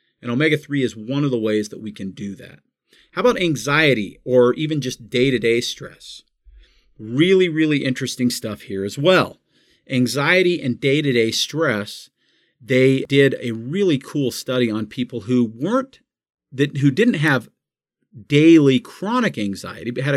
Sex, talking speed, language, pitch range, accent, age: male, 145 wpm, English, 115-150 Hz, American, 40-59